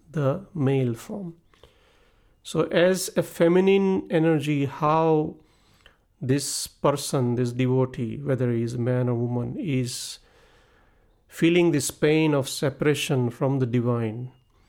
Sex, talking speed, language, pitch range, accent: male, 115 wpm, English, 120-140 Hz, Indian